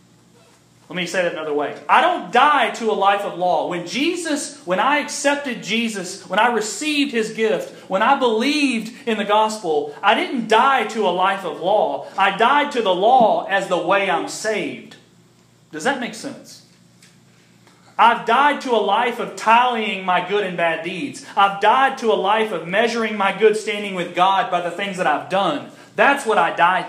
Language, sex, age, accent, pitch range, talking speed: English, male, 30-49, American, 180-235 Hz, 195 wpm